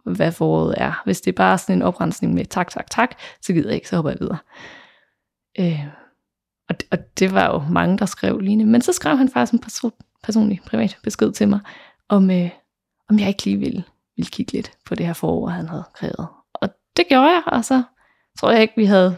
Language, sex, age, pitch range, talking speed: Danish, female, 20-39, 180-235 Hz, 230 wpm